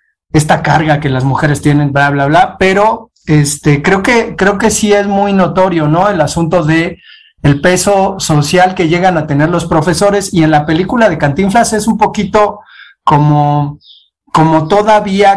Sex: male